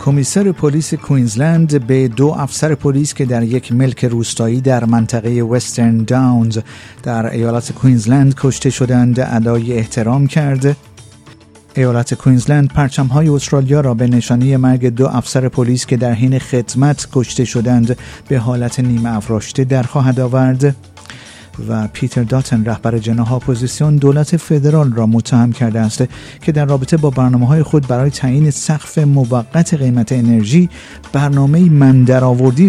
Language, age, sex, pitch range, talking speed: Persian, 50-69, male, 115-140 Hz, 140 wpm